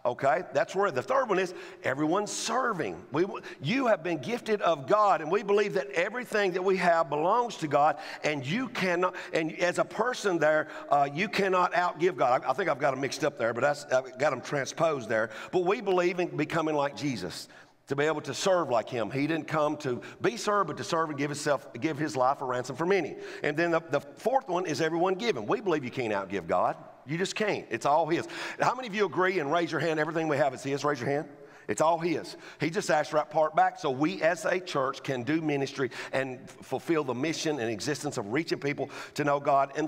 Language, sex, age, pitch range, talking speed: English, male, 50-69, 145-190 Hz, 235 wpm